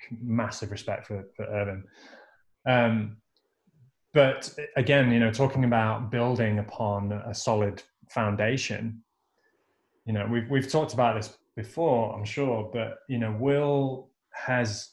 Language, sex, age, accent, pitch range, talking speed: English, male, 20-39, British, 105-130 Hz, 130 wpm